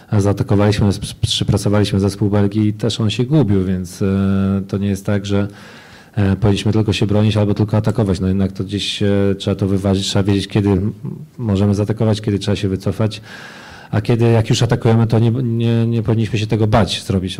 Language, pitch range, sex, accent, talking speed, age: Polish, 105-115 Hz, male, native, 180 wpm, 40-59